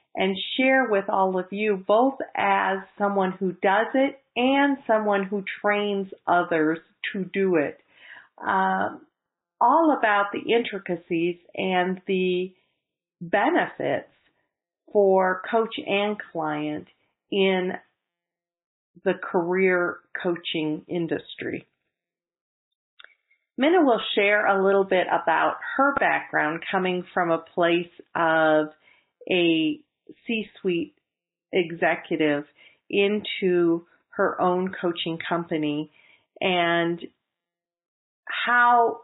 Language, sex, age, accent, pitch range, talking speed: English, female, 40-59, American, 170-205 Hz, 95 wpm